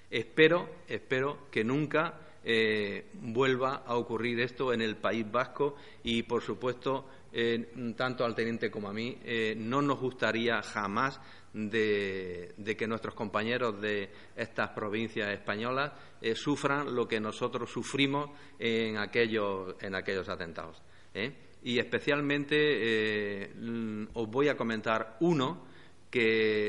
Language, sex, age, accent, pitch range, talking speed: Spanish, male, 50-69, Spanish, 100-130 Hz, 125 wpm